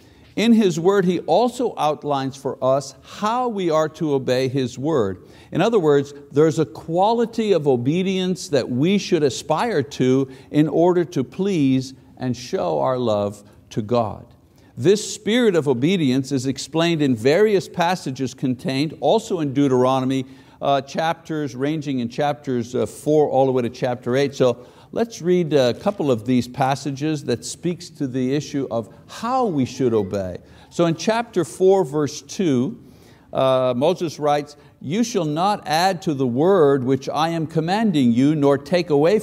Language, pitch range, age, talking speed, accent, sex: English, 130-175 Hz, 60-79, 160 wpm, American, male